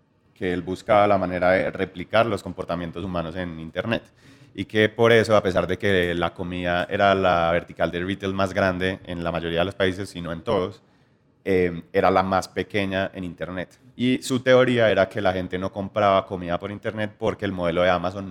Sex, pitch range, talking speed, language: male, 90-100 Hz, 205 wpm, Spanish